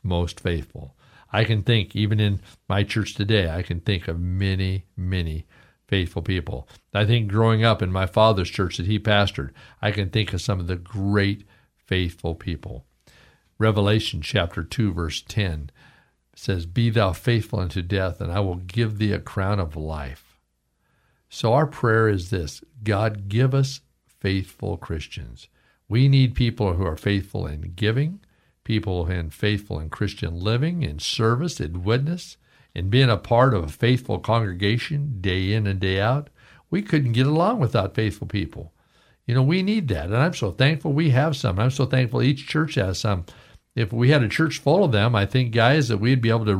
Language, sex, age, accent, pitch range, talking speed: English, male, 50-69, American, 95-120 Hz, 185 wpm